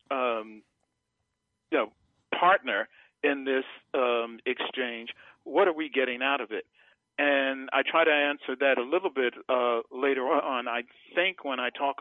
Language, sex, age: English, male, 50-69